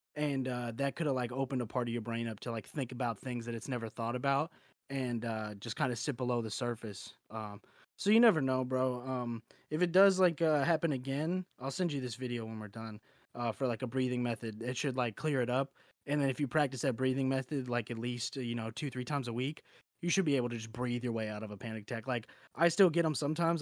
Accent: American